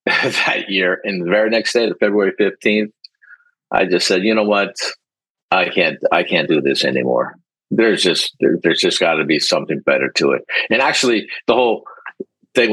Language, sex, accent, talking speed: English, male, American, 190 wpm